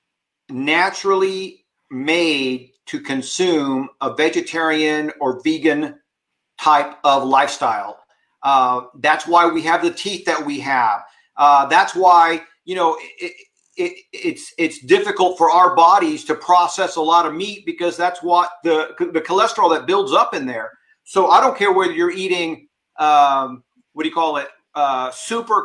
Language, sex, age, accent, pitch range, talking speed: English, male, 50-69, American, 150-185 Hz, 150 wpm